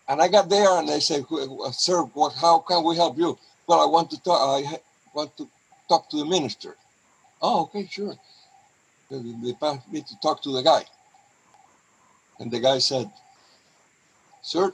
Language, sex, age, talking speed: English, male, 60-79, 170 wpm